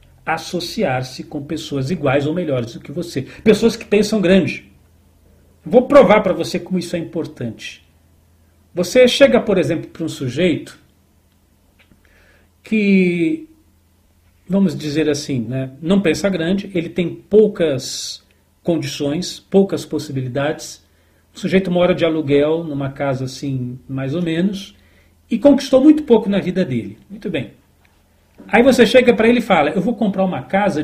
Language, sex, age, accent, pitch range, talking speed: Portuguese, male, 40-59, Brazilian, 135-195 Hz, 145 wpm